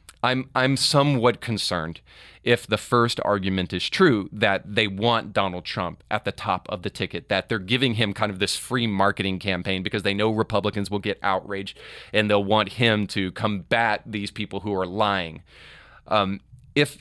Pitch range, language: 95-120 Hz, English